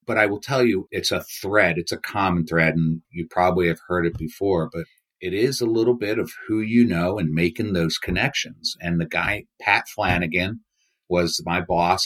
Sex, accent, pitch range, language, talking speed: male, American, 80-100 Hz, English, 205 wpm